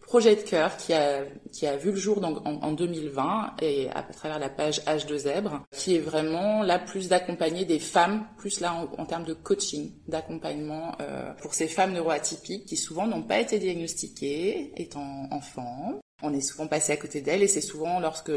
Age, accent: 20-39, French